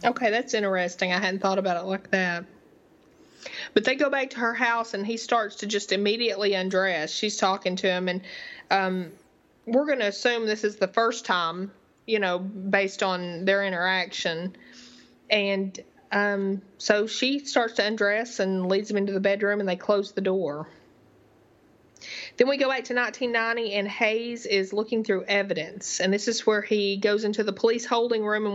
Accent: American